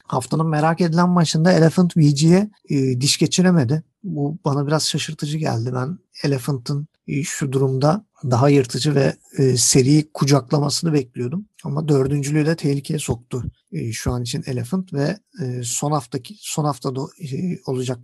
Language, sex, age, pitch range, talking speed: Turkish, male, 50-69, 135-170 Hz, 135 wpm